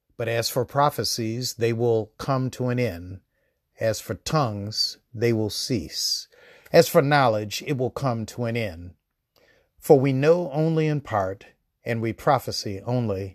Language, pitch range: English, 110-135 Hz